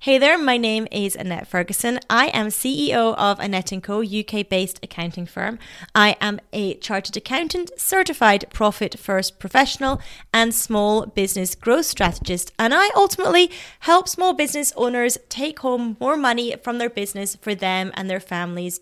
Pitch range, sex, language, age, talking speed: 195-265 Hz, female, English, 30-49, 155 wpm